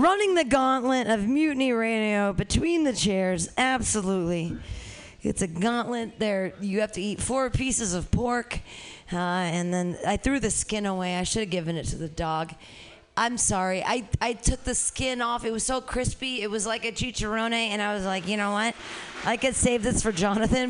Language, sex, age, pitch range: English, female, 30-49, 200-270 Hz